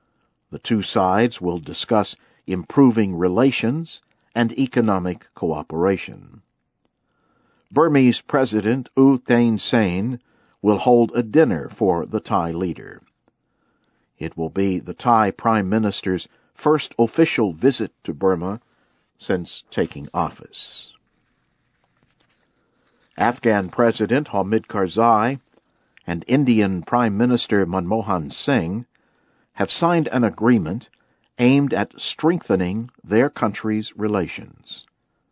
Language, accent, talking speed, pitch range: English, American, 100 wpm, 95-120 Hz